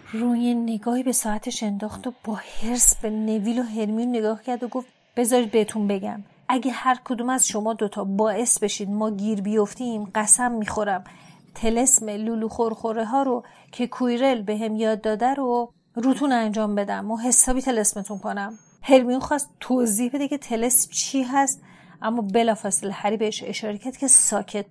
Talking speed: 160 wpm